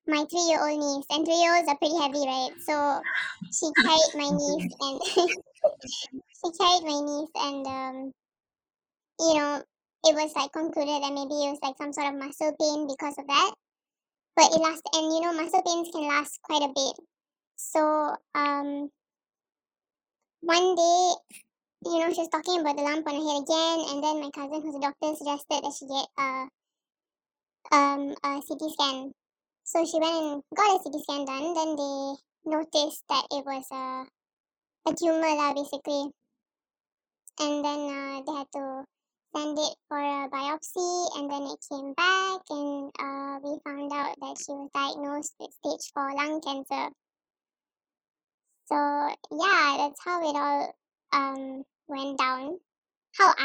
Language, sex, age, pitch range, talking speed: English, male, 10-29, 280-320 Hz, 165 wpm